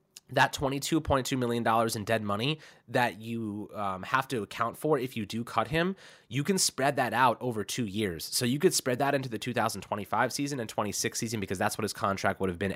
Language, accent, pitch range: English, American, 115-160 Hz